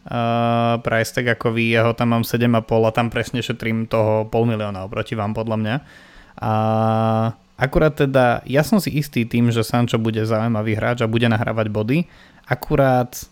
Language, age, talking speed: Slovak, 20-39, 170 wpm